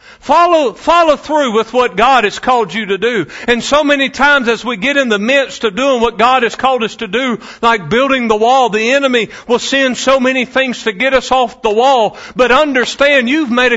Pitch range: 200-255 Hz